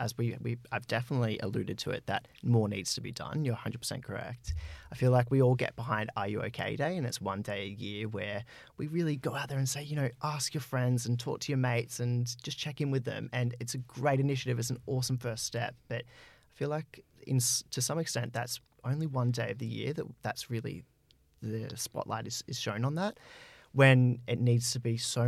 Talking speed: 235 wpm